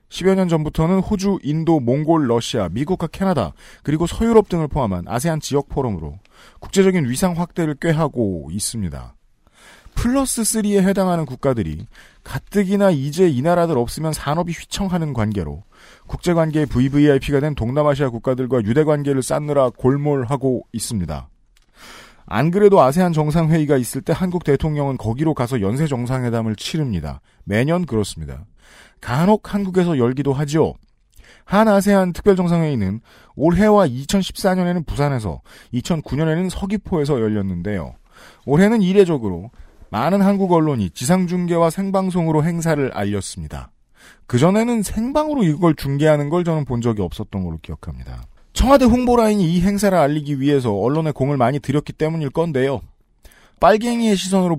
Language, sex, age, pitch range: Korean, male, 40-59, 115-180 Hz